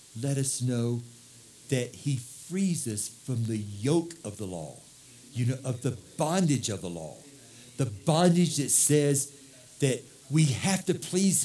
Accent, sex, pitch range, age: American, male, 135-205 Hz, 60-79